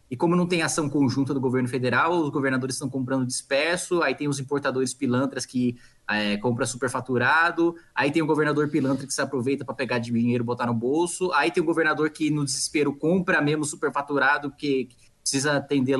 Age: 20-39